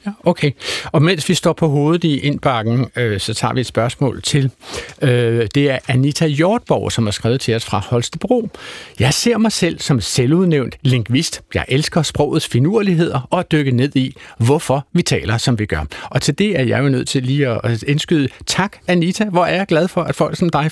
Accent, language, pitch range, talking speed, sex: native, Danish, 125-170 Hz, 210 wpm, male